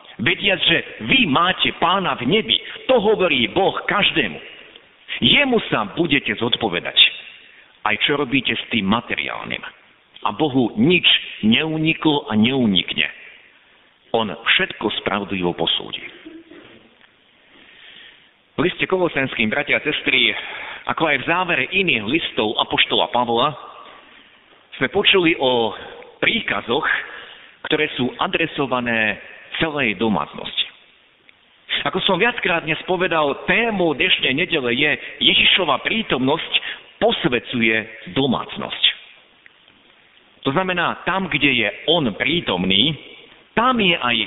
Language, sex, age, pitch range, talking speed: Slovak, male, 50-69, 125-190 Hz, 105 wpm